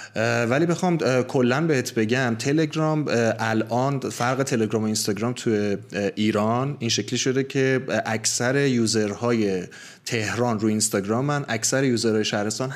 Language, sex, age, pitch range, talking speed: English, male, 30-49, 110-125 Hz, 120 wpm